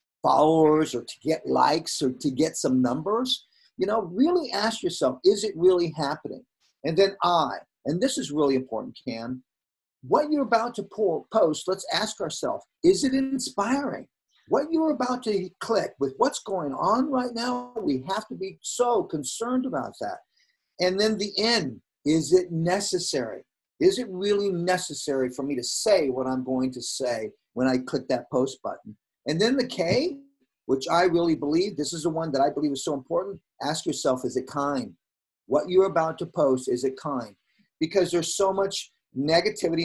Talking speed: 180 wpm